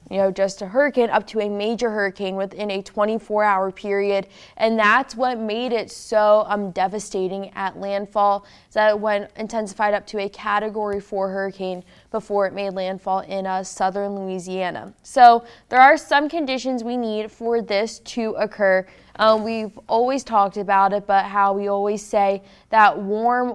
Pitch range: 200-230 Hz